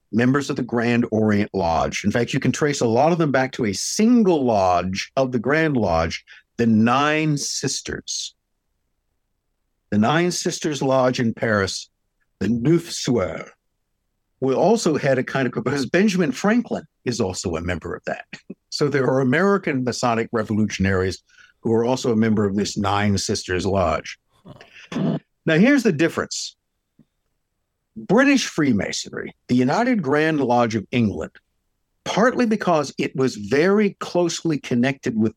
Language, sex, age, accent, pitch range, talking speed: English, male, 60-79, American, 105-160 Hz, 150 wpm